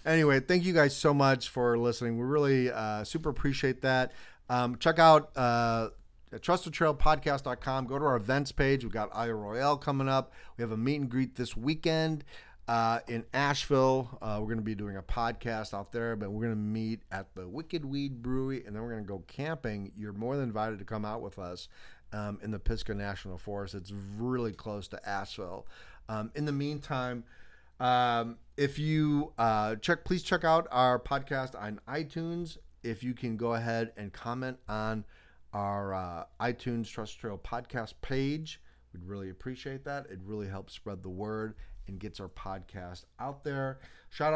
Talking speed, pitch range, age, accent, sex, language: 185 wpm, 105-140 Hz, 40-59, American, male, English